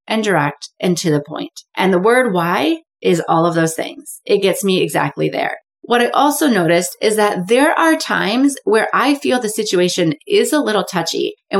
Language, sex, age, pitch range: English, female, 30-49, 170-240 Hz